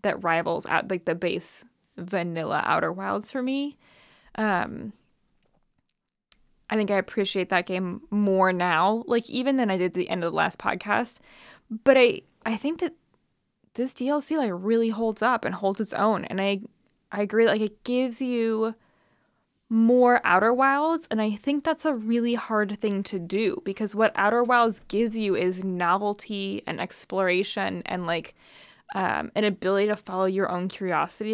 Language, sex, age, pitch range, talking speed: English, female, 10-29, 185-225 Hz, 170 wpm